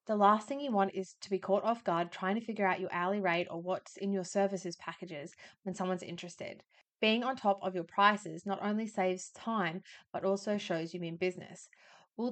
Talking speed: 215 wpm